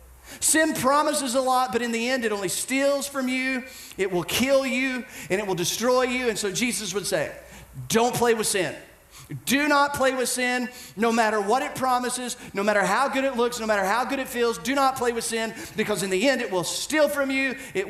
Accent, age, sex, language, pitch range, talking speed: American, 40-59, male, English, 185-250 Hz, 230 wpm